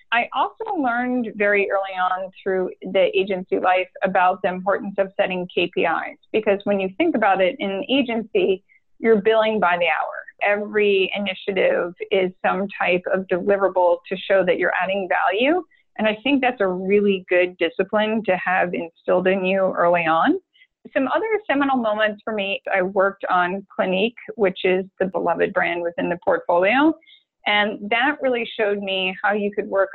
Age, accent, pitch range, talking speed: 30-49, American, 185-225 Hz, 170 wpm